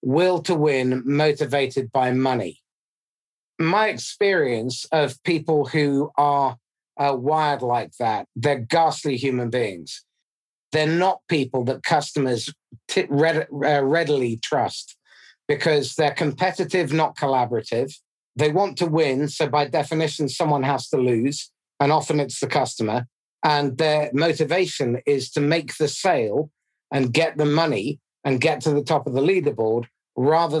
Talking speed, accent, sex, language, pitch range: 135 wpm, British, male, English, 135-165 Hz